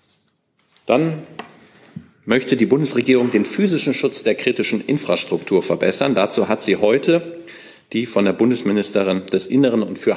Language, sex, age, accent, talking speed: German, male, 50-69, German, 135 wpm